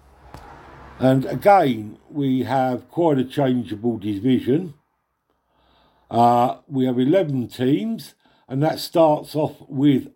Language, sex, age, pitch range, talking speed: English, male, 50-69, 130-180 Hz, 105 wpm